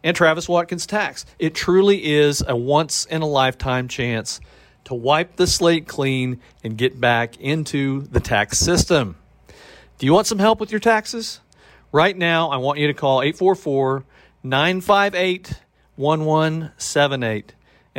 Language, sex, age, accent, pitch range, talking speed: English, male, 40-59, American, 125-160 Hz, 135 wpm